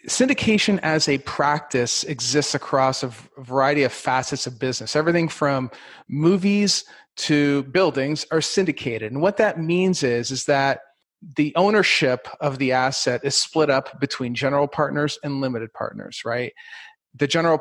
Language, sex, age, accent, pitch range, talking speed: English, male, 40-59, American, 125-150 Hz, 145 wpm